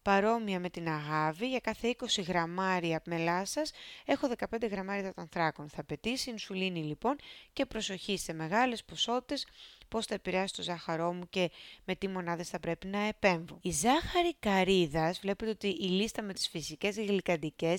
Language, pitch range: Greek, 170-210 Hz